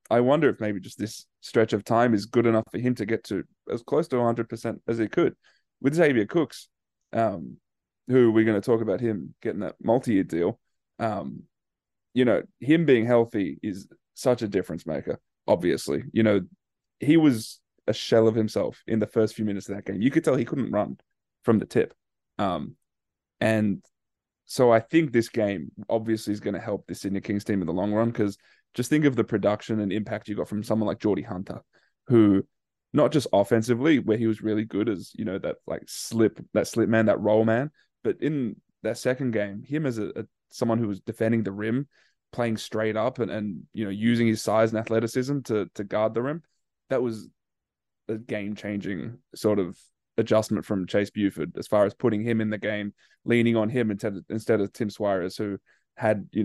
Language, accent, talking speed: English, Australian, 210 wpm